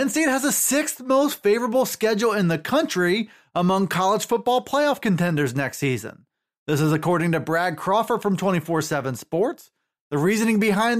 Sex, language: male, English